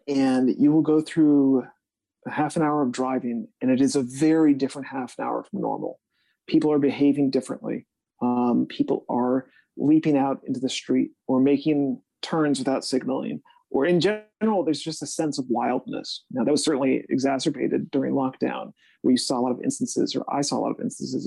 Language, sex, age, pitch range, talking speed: English, male, 30-49, 130-160 Hz, 195 wpm